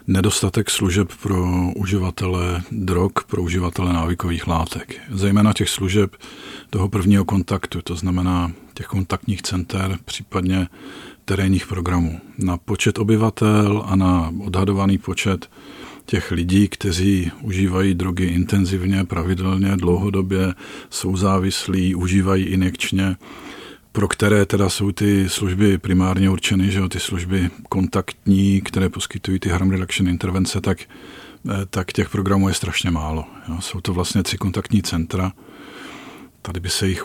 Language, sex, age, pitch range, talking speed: Czech, male, 50-69, 90-100 Hz, 130 wpm